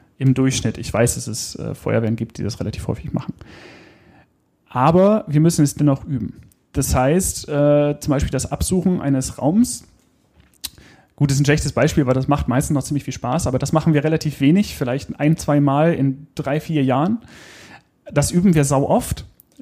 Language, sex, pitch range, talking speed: German, male, 125-155 Hz, 190 wpm